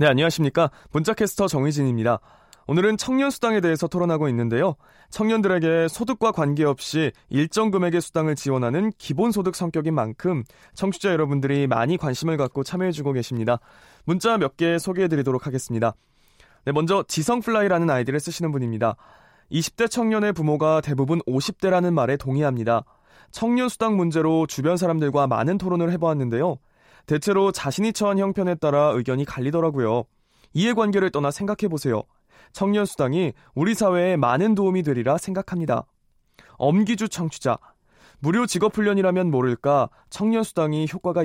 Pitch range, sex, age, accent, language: 135-190 Hz, male, 20-39, native, Korean